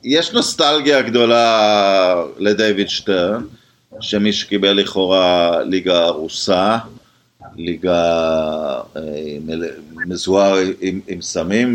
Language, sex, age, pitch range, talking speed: Hebrew, male, 50-69, 95-120 Hz, 75 wpm